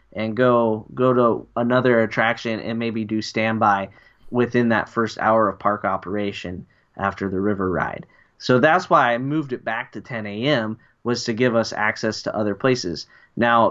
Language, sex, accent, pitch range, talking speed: English, male, American, 110-130 Hz, 175 wpm